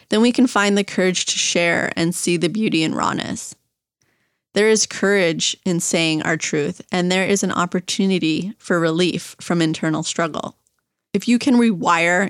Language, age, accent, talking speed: English, 20-39, American, 170 wpm